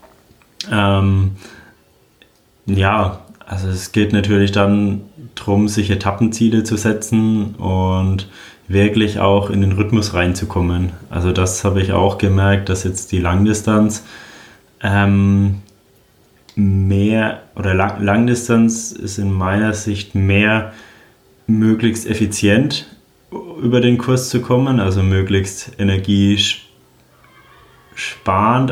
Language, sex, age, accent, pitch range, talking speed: German, male, 20-39, German, 95-110 Hz, 100 wpm